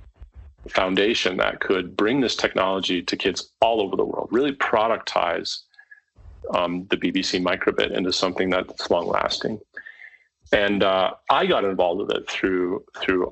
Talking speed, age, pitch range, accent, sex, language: 140 wpm, 30-49, 90-125 Hz, American, male, English